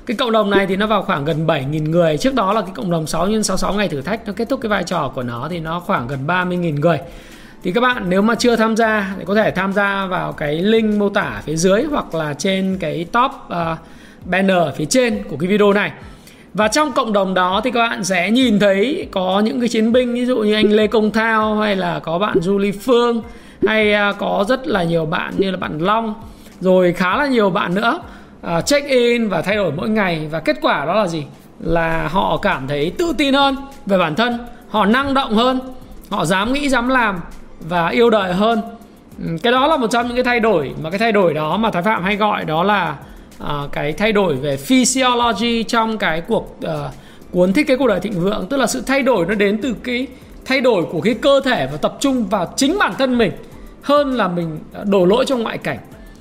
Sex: male